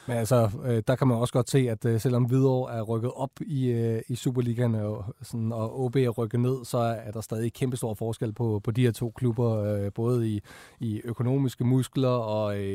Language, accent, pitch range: Danish, native, 115-140 Hz